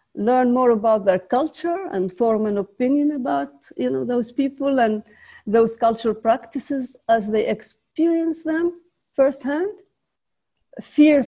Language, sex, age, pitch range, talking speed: English, female, 50-69, 185-270 Hz, 125 wpm